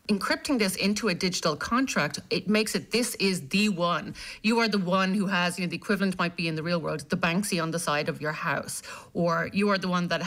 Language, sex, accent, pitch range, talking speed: English, female, Irish, 170-215 Hz, 250 wpm